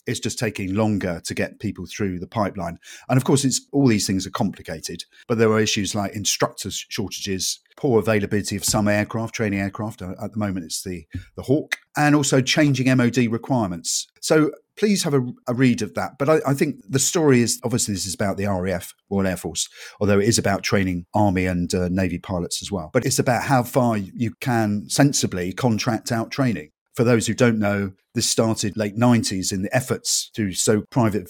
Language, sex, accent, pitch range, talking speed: English, male, British, 95-120 Hz, 205 wpm